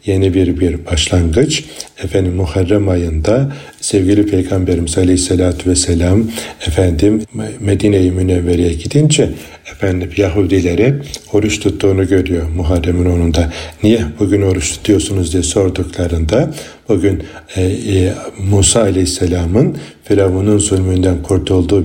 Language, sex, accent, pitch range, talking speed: Turkish, male, native, 90-105 Hz, 100 wpm